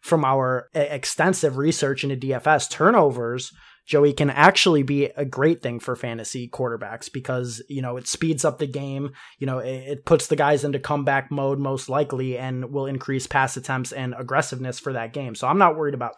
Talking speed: 190 wpm